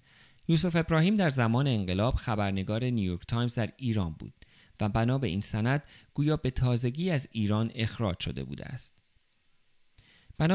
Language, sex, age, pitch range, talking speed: Persian, male, 50-69, 105-135 Hz, 150 wpm